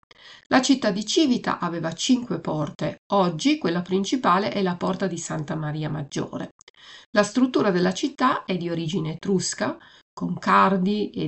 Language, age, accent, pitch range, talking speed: Italian, 50-69, native, 170-220 Hz, 150 wpm